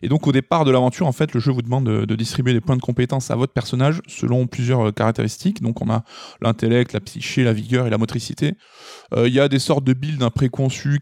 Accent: French